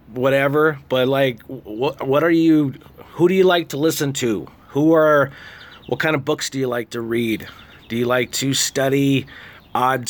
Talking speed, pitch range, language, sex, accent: 185 wpm, 130-160 Hz, English, male, American